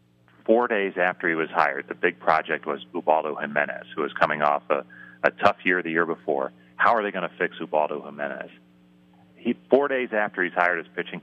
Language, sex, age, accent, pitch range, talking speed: English, male, 40-59, American, 65-90 Hz, 205 wpm